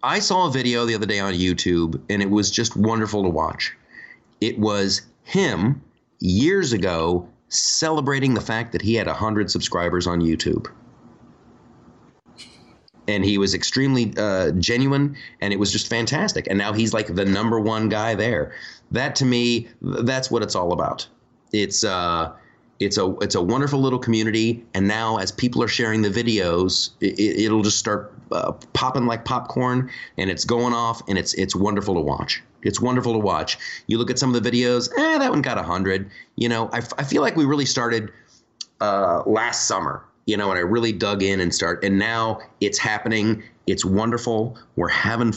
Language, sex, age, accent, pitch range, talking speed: English, male, 30-49, American, 100-120 Hz, 190 wpm